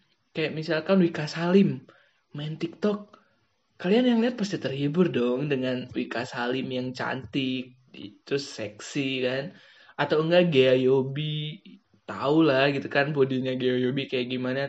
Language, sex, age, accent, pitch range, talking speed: Indonesian, male, 20-39, native, 135-195 Hz, 135 wpm